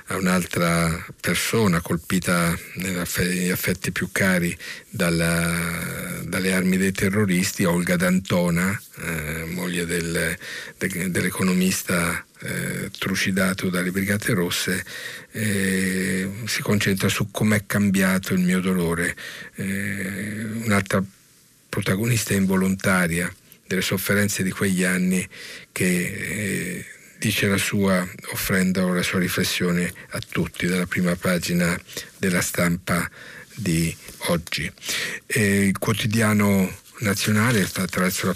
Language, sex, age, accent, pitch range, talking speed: Italian, male, 50-69, native, 90-105 Hz, 105 wpm